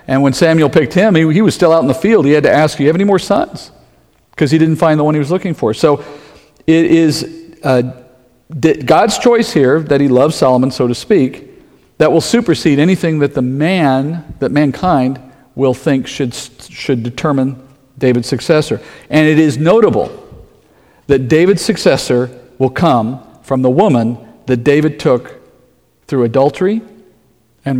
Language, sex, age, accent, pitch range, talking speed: English, male, 50-69, American, 130-175 Hz, 175 wpm